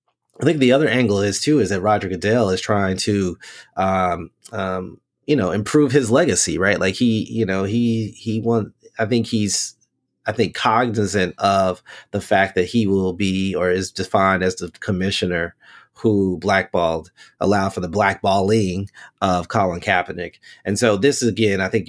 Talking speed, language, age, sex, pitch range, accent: 175 wpm, English, 30-49, male, 95-110 Hz, American